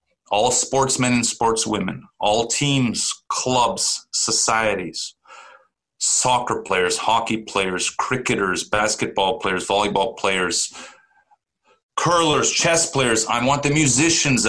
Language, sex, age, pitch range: English, male, 30-49, 110-150 Hz